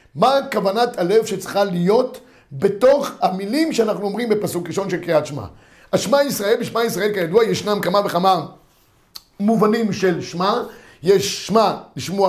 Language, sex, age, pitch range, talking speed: Hebrew, male, 50-69, 175-220 Hz, 135 wpm